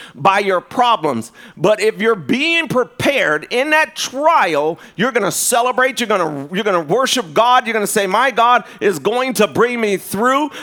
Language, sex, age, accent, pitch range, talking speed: English, male, 40-59, American, 200-255 Hz, 175 wpm